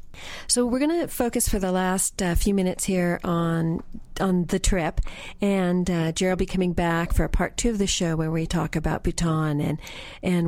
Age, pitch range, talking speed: 40-59, 160-195 Hz, 210 wpm